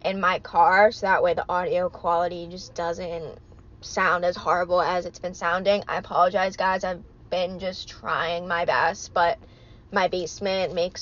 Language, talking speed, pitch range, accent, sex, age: English, 170 wpm, 175-220 Hz, American, female, 20-39